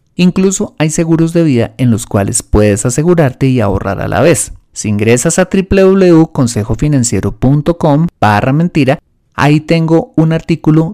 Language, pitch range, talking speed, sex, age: Spanish, 110-165 Hz, 135 wpm, male, 30-49